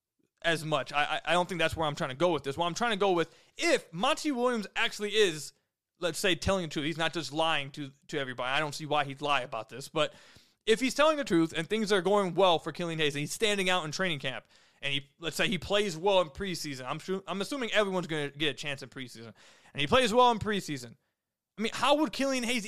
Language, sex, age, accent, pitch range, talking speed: English, male, 20-39, American, 150-205 Hz, 260 wpm